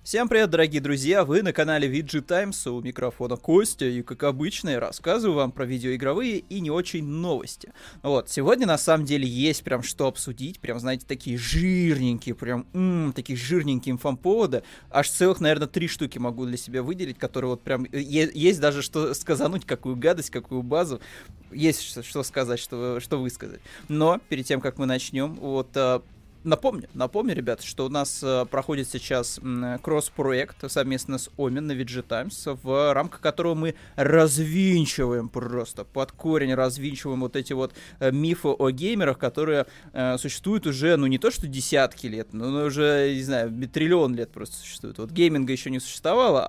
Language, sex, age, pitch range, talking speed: Russian, male, 20-39, 130-160 Hz, 170 wpm